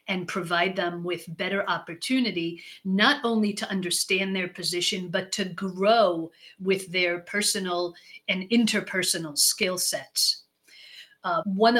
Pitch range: 180-215 Hz